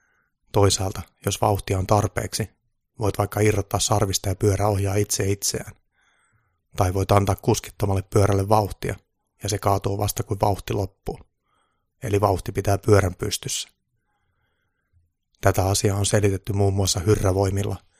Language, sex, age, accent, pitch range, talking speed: Finnish, male, 30-49, native, 95-105 Hz, 130 wpm